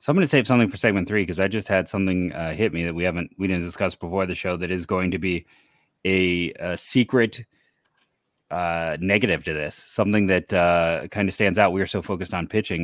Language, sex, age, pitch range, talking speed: English, male, 30-49, 85-100 Hz, 240 wpm